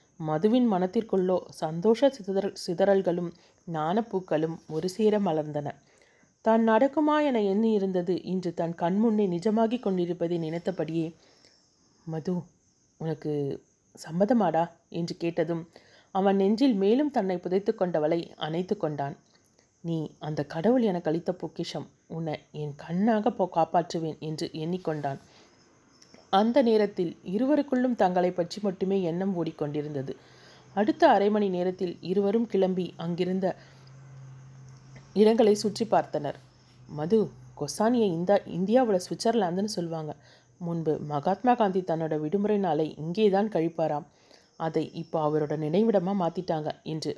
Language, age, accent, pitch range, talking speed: Tamil, 30-49, native, 160-210 Hz, 100 wpm